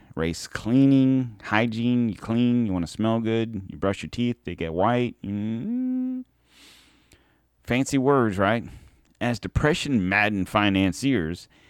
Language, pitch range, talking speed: English, 90-115 Hz, 130 wpm